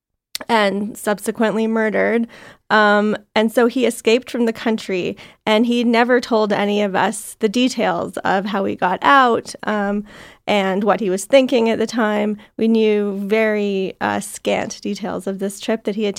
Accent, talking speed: American, 170 wpm